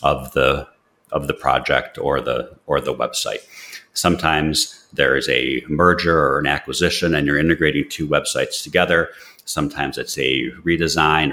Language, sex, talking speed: English, male, 150 wpm